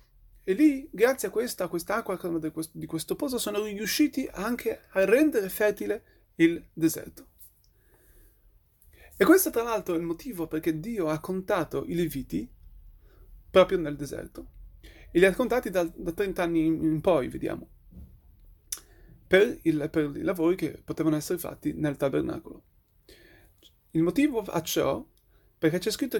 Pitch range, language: 160-230 Hz, Italian